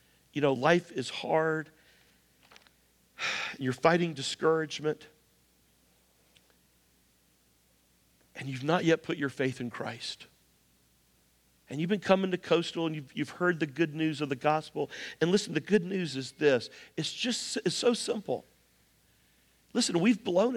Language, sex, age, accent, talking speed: English, male, 50-69, American, 140 wpm